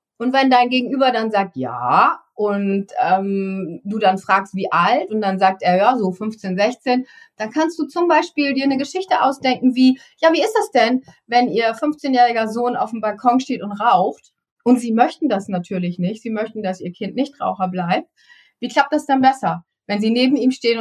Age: 30-49